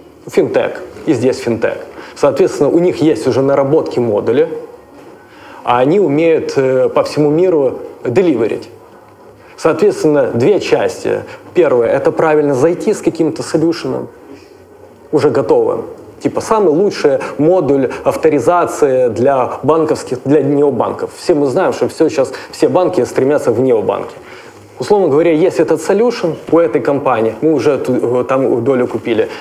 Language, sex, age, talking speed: Russian, male, 20-39, 130 wpm